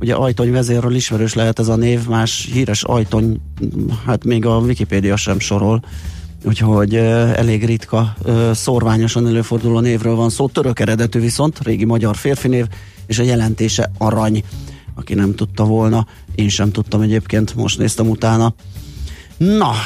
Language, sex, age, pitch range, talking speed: Hungarian, male, 30-49, 105-120 Hz, 140 wpm